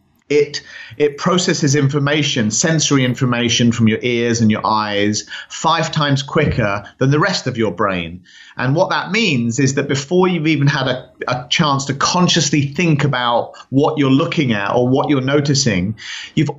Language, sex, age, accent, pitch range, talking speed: English, male, 30-49, British, 120-155 Hz, 170 wpm